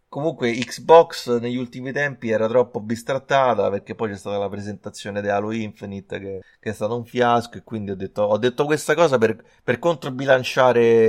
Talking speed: 185 wpm